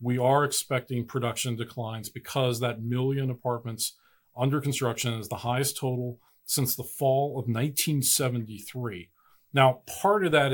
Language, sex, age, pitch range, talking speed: English, male, 40-59, 120-145 Hz, 135 wpm